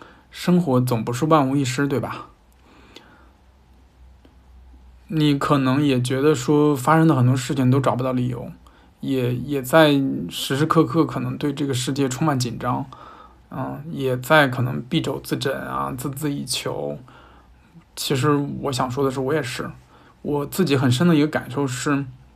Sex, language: male, Chinese